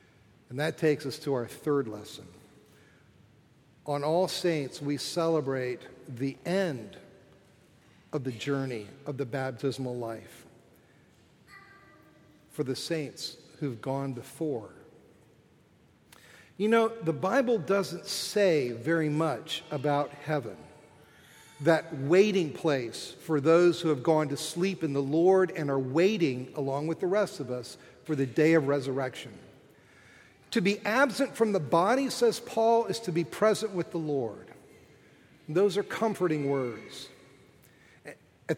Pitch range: 140-185 Hz